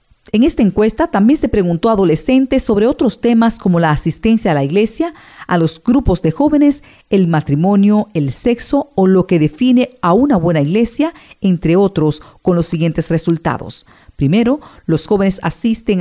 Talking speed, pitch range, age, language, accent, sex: 165 wpm, 155-230 Hz, 50-69, English, American, female